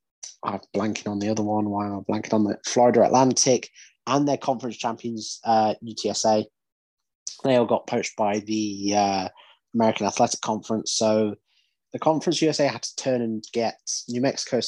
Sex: male